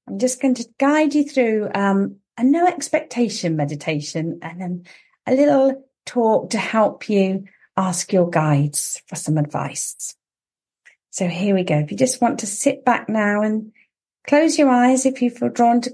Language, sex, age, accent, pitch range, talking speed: English, female, 40-59, British, 185-245 Hz, 175 wpm